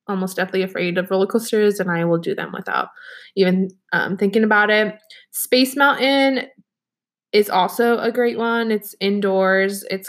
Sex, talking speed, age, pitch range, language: female, 160 wpm, 20-39, 190-230 Hz, English